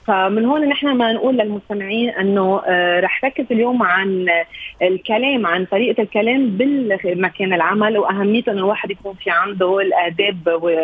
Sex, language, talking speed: female, Arabic, 140 wpm